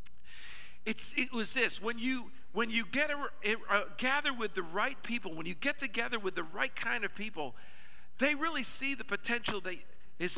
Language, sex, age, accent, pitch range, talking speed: Russian, male, 50-69, American, 150-235 Hz, 195 wpm